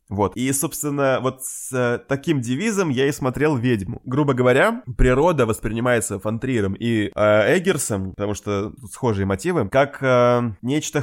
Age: 20-39